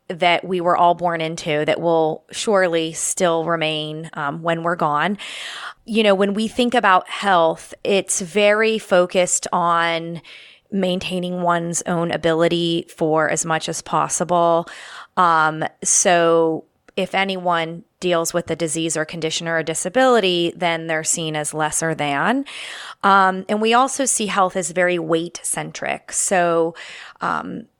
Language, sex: English, female